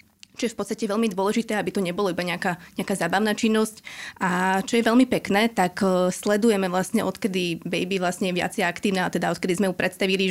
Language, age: Slovak, 20-39